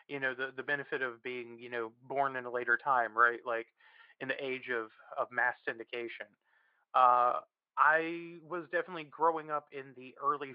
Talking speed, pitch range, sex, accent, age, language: 180 wpm, 120-150 Hz, male, American, 30-49, English